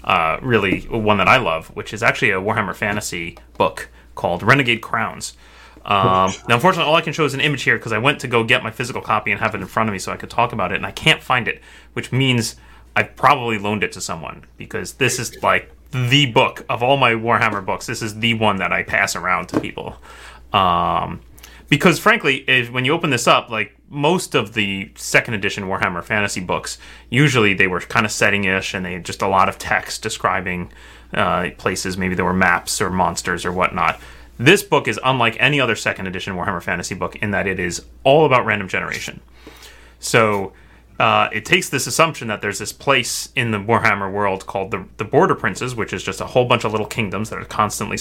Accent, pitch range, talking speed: American, 95-125 Hz, 220 wpm